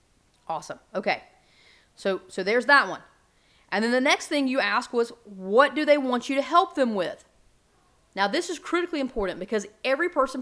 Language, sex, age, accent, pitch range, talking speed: English, female, 30-49, American, 210-275 Hz, 185 wpm